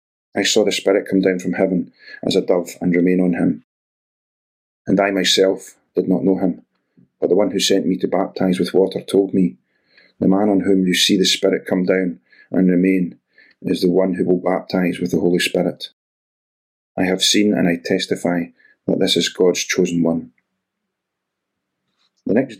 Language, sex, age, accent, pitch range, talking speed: English, male, 40-59, British, 90-100 Hz, 185 wpm